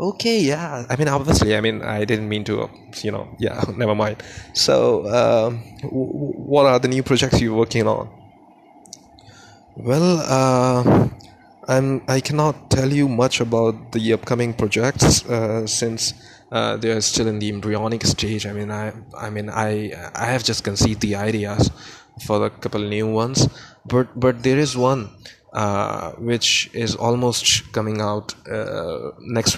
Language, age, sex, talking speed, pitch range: Urdu, 20-39, male, 160 wpm, 105-125 Hz